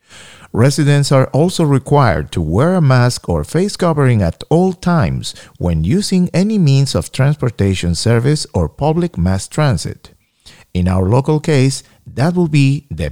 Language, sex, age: English, male, 50-69